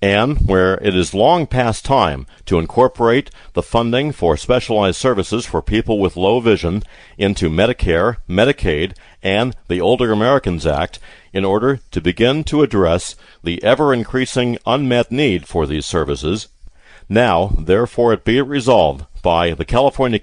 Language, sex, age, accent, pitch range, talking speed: English, male, 50-69, American, 95-125 Hz, 140 wpm